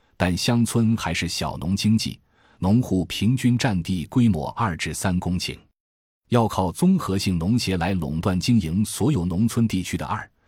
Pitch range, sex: 80-110 Hz, male